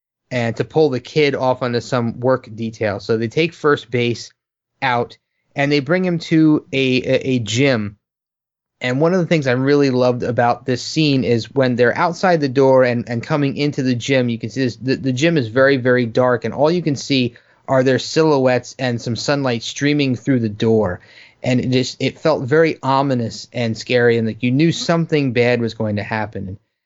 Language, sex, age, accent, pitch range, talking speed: English, male, 30-49, American, 115-140 Hz, 210 wpm